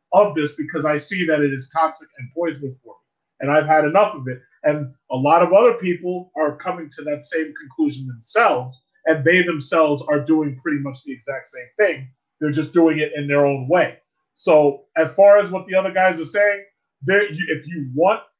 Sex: male